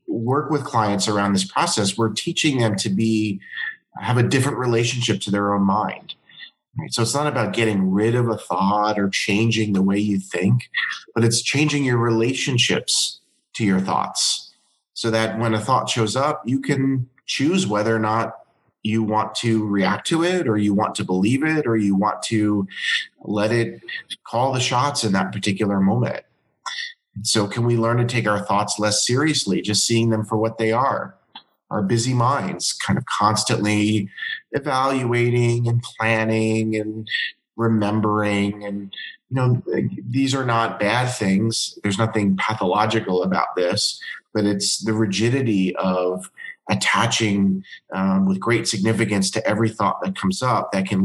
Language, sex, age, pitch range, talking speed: English, male, 30-49, 100-120 Hz, 165 wpm